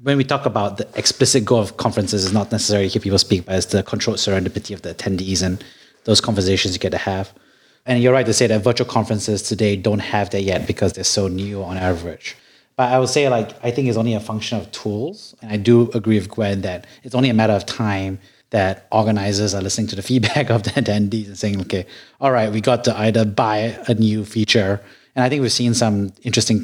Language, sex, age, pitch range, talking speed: English, male, 30-49, 100-115 Hz, 235 wpm